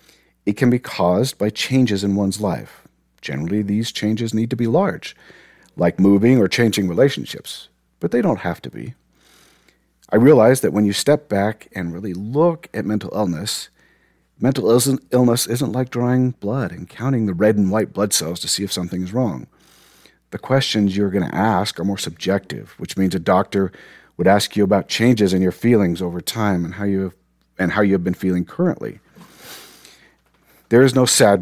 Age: 50-69